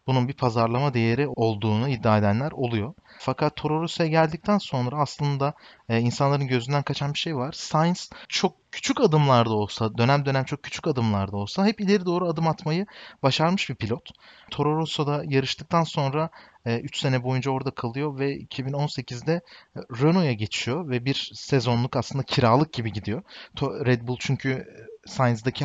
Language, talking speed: Turkish, 145 wpm